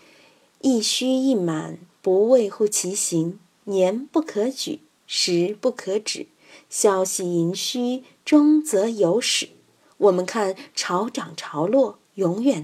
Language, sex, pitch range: Chinese, female, 195-280 Hz